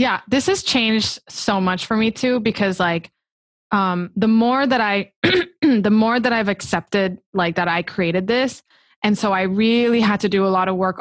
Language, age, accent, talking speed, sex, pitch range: English, 20-39, American, 200 wpm, female, 185-230 Hz